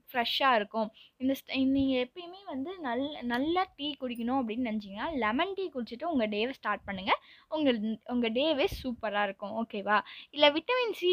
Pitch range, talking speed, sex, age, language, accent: 225-300 Hz, 150 wpm, female, 20-39, Tamil, native